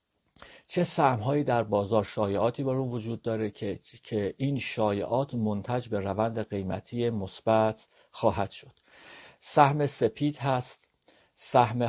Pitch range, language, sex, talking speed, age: 100-120 Hz, Persian, male, 120 wpm, 50-69